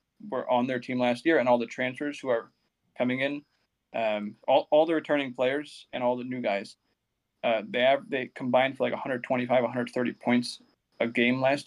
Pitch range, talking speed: 115-135 Hz, 195 wpm